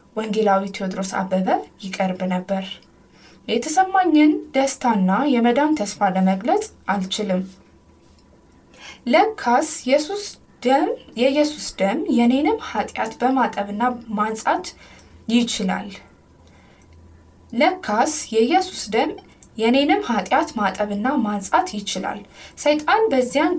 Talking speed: 80 wpm